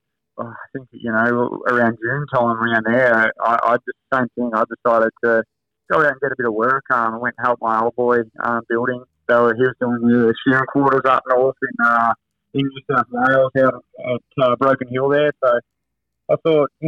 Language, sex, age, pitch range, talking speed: English, male, 20-39, 120-135 Hz, 215 wpm